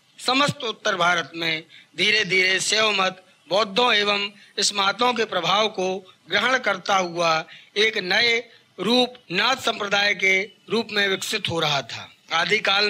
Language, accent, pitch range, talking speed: English, Indian, 195-225 Hz, 130 wpm